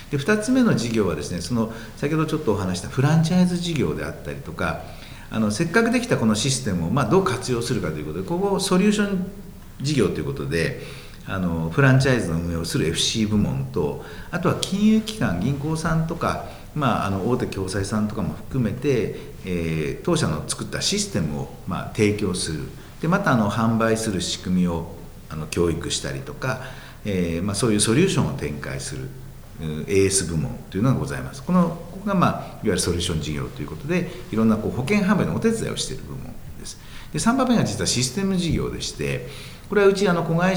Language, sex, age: Japanese, male, 50-69